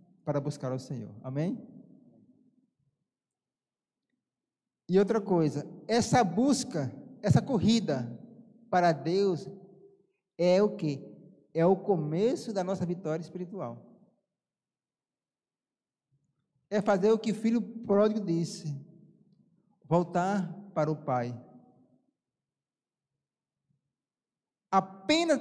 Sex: male